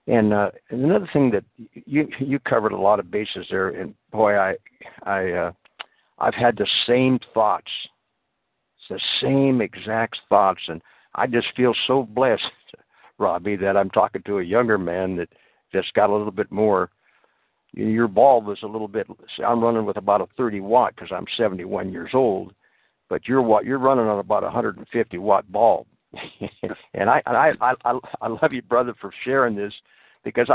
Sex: male